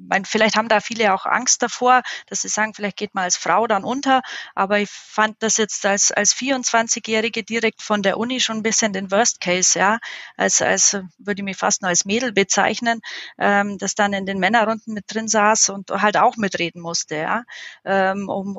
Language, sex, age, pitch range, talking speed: German, female, 30-49, 195-220 Hz, 200 wpm